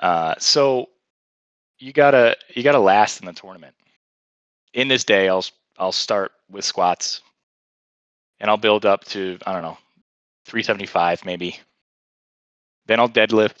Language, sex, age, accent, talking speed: English, male, 20-39, American, 135 wpm